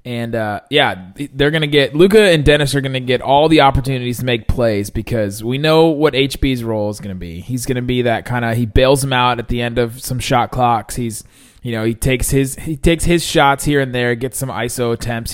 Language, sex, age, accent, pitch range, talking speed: English, male, 20-39, American, 110-135 Hz, 255 wpm